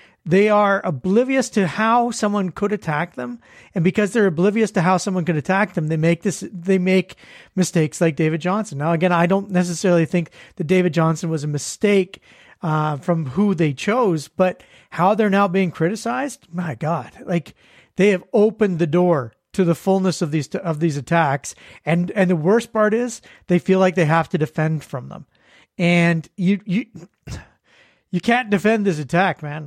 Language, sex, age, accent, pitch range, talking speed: English, male, 40-59, American, 160-195 Hz, 185 wpm